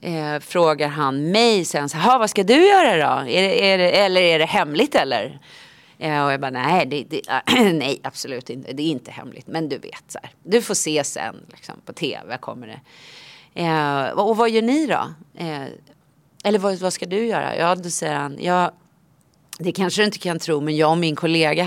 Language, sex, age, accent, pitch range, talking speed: English, female, 30-49, Swedish, 150-200 Hz, 210 wpm